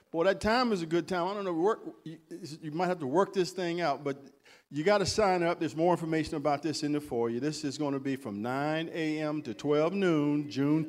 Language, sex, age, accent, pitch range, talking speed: English, male, 50-69, American, 125-155 Hz, 260 wpm